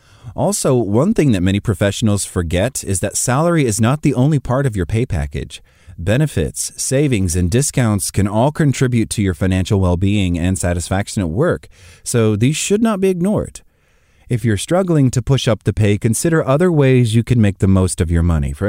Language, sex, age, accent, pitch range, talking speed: English, male, 30-49, American, 85-125 Hz, 195 wpm